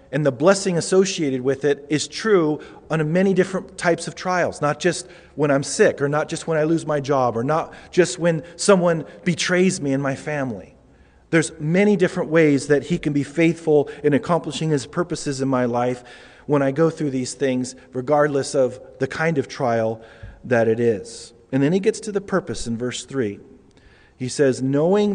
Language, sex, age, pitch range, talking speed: English, male, 40-59, 135-170 Hz, 195 wpm